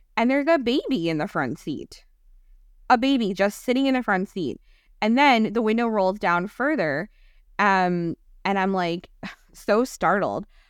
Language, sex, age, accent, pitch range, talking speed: English, female, 20-39, American, 190-260 Hz, 165 wpm